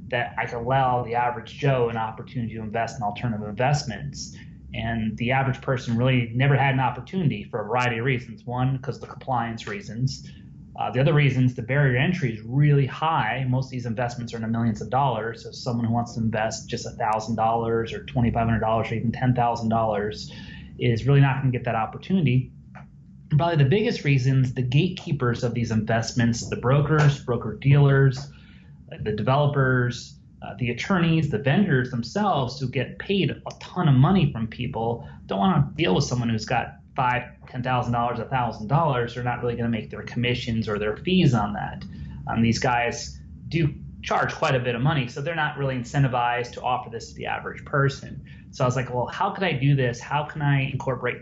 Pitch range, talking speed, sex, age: 115-135 Hz, 185 wpm, male, 30-49